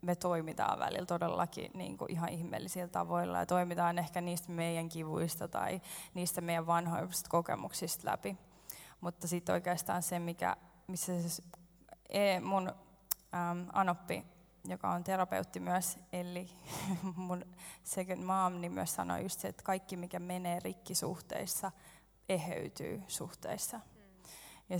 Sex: female